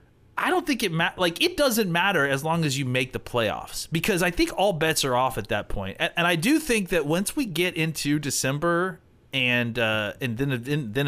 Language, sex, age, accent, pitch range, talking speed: English, male, 30-49, American, 115-165 Hz, 235 wpm